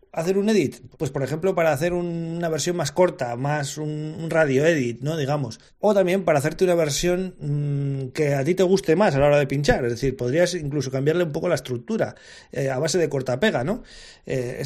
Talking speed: 220 wpm